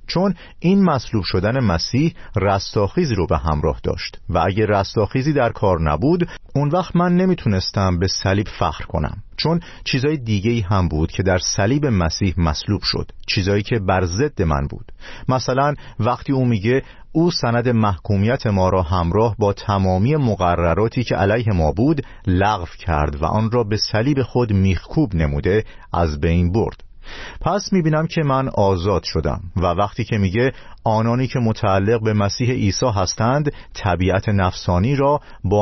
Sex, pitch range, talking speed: male, 95-130 Hz, 155 wpm